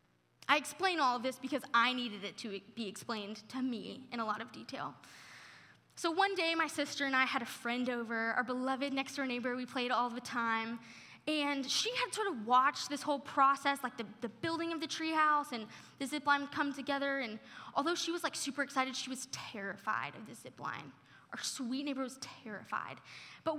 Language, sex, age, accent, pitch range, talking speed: English, female, 10-29, American, 235-290 Hz, 205 wpm